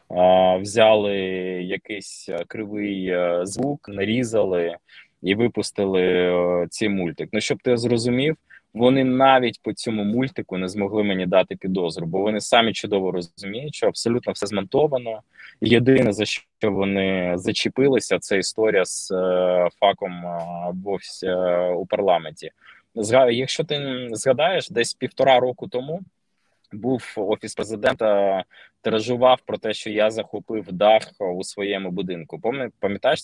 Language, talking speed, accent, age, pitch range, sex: Ukrainian, 115 wpm, native, 20-39, 95-125 Hz, male